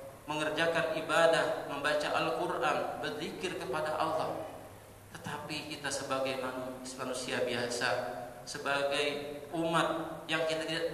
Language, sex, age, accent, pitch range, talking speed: Indonesian, male, 40-59, native, 130-170 Hz, 90 wpm